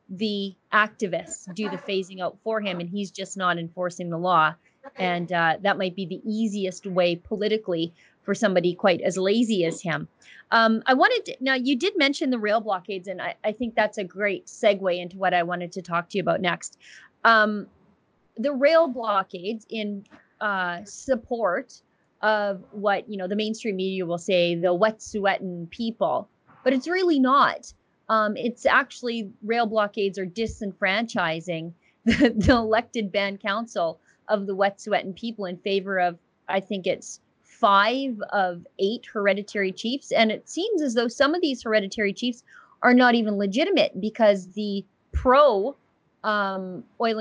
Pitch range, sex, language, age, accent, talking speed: 190-230 Hz, female, English, 30-49, American, 165 wpm